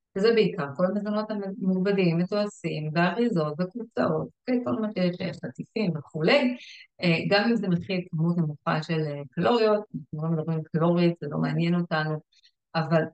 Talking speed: 140 wpm